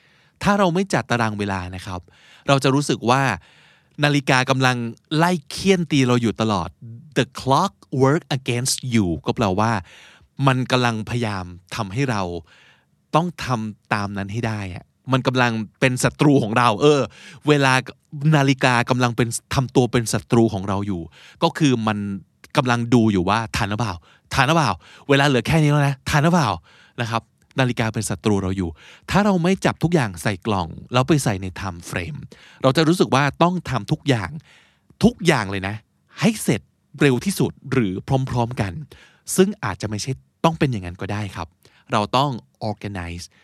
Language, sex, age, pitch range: Thai, male, 20-39, 105-145 Hz